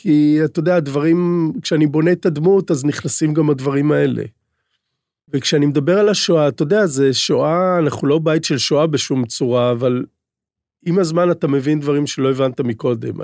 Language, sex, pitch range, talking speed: Hebrew, male, 130-155 Hz, 170 wpm